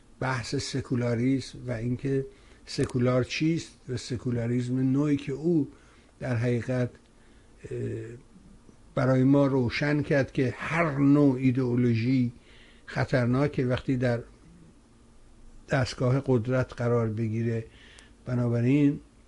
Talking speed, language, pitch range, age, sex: 90 wpm, Persian, 120-140 Hz, 60-79, male